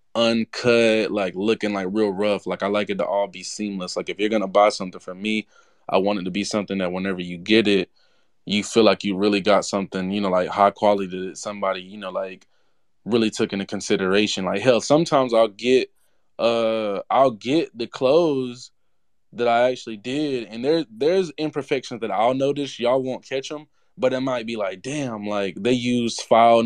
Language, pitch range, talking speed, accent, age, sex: English, 100-120 Hz, 200 wpm, American, 20-39, male